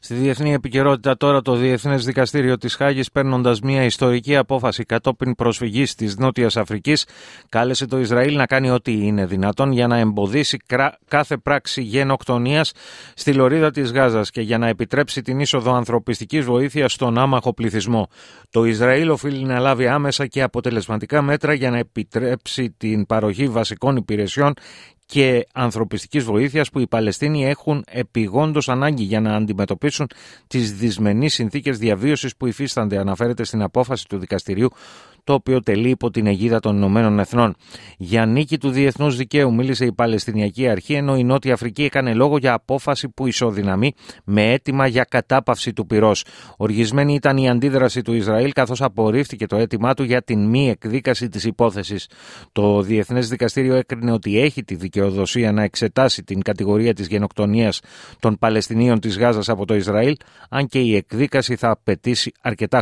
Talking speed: 160 wpm